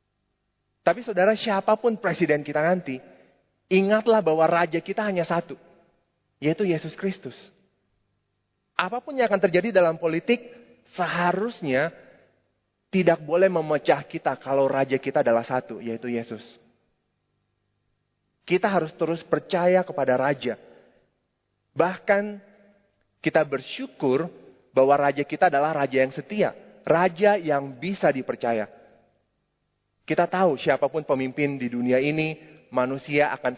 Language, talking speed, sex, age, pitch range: Indonesian, 110 wpm, male, 30-49, 125-170 Hz